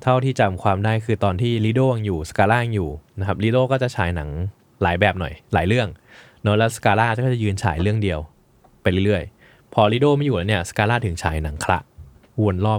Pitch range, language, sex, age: 95-125 Hz, Thai, male, 20-39